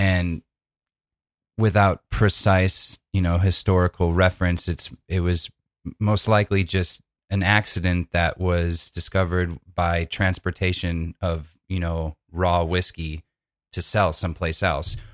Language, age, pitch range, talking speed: English, 20-39, 85-95 Hz, 115 wpm